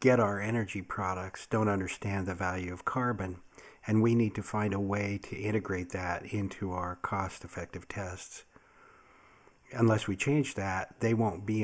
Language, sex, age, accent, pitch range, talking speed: English, male, 50-69, American, 90-110 Hz, 160 wpm